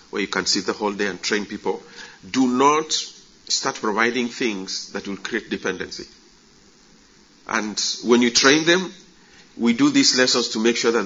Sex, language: male, English